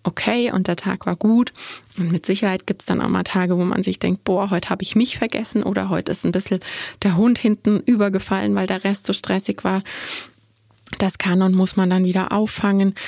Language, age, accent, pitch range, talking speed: German, 20-39, German, 180-210 Hz, 220 wpm